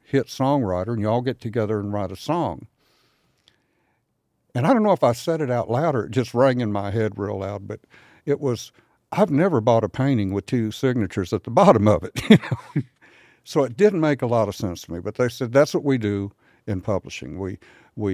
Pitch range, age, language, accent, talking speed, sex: 100-125 Hz, 60-79, English, American, 220 wpm, male